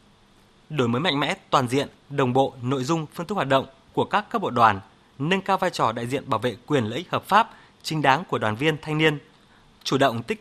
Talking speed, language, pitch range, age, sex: 235 wpm, Vietnamese, 130-180 Hz, 20-39, male